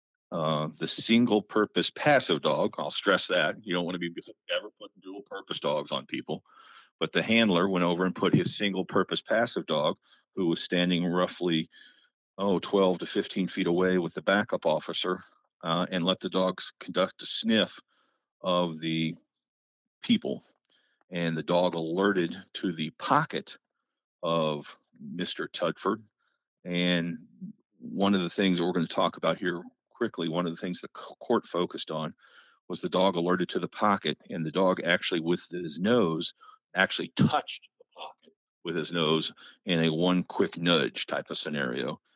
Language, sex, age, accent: English, male, 50-69, American